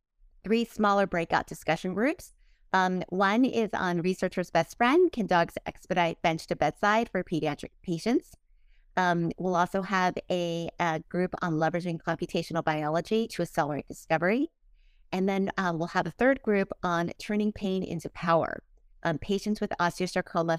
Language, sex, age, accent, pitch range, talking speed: English, female, 30-49, American, 165-190 Hz, 150 wpm